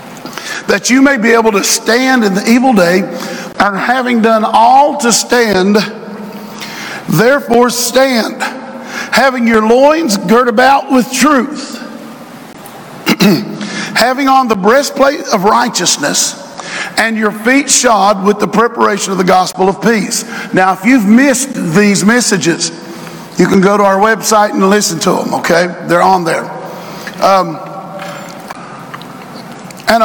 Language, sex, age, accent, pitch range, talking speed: English, male, 50-69, American, 200-260 Hz, 130 wpm